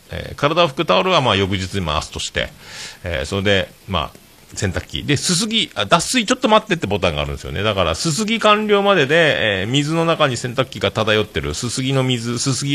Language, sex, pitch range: Japanese, male, 85-120 Hz